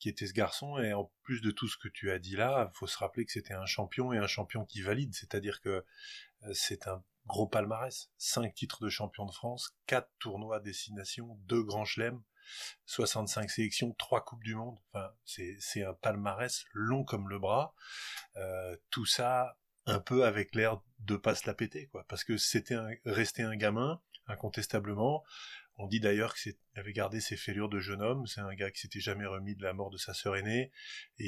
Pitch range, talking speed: 100-120 Hz, 210 wpm